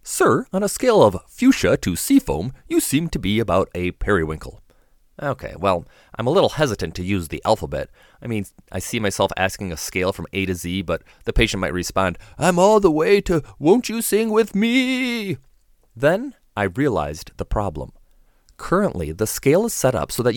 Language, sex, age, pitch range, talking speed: English, male, 30-49, 90-140 Hz, 190 wpm